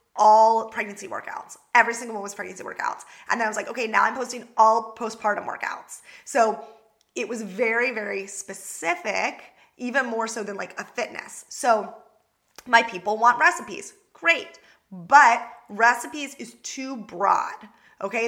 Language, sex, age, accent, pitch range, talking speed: English, female, 20-39, American, 220-280 Hz, 150 wpm